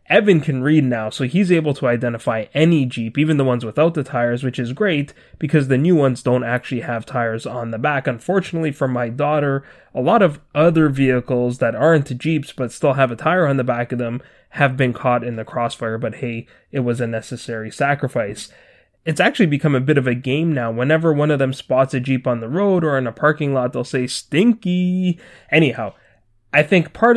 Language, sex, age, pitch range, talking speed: English, male, 20-39, 125-150 Hz, 215 wpm